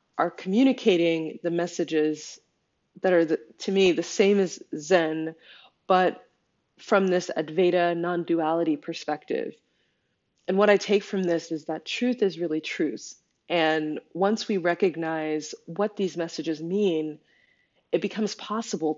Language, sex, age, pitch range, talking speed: English, female, 20-39, 160-195 Hz, 130 wpm